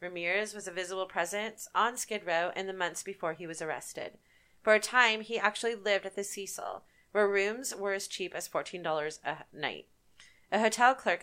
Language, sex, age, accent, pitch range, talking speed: English, female, 30-49, American, 180-220 Hz, 190 wpm